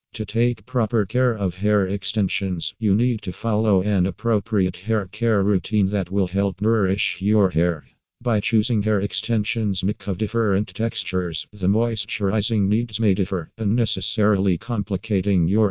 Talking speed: 145 wpm